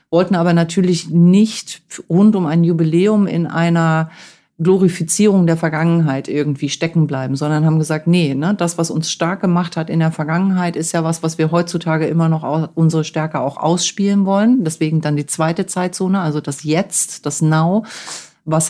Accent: German